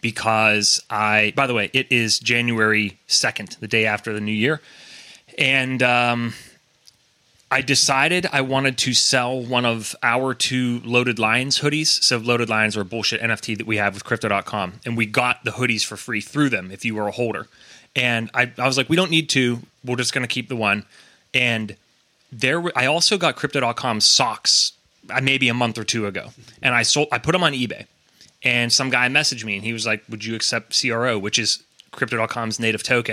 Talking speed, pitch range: 200 wpm, 115-135 Hz